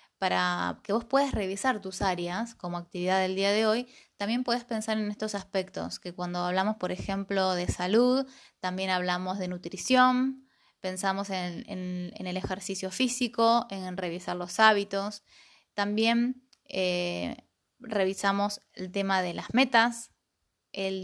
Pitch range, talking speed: 185-230 Hz, 140 wpm